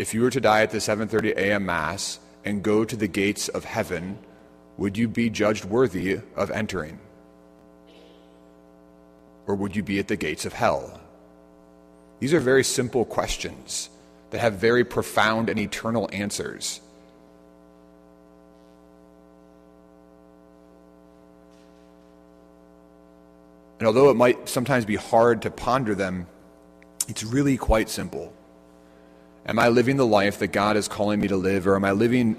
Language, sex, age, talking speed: English, male, 40-59, 140 wpm